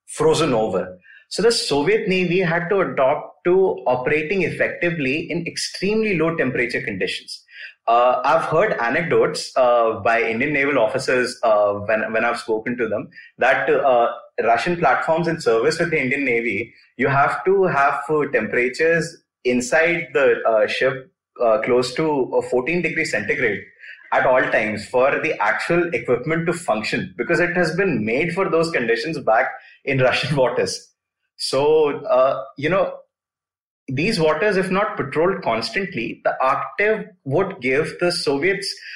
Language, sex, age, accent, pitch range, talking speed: English, male, 30-49, Indian, 140-215 Hz, 145 wpm